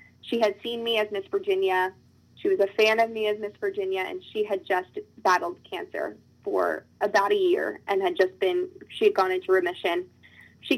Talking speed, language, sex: 200 wpm, English, female